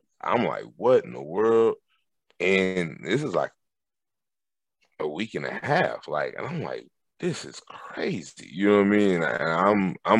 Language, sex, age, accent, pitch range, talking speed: English, male, 30-49, American, 90-120 Hz, 180 wpm